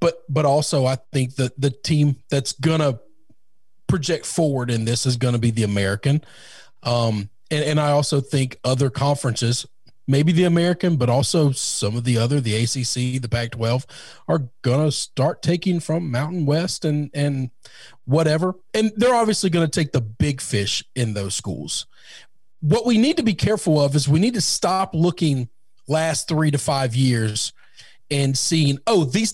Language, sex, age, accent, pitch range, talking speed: English, male, 40-59, American, 130-185 Hz, 180 wpm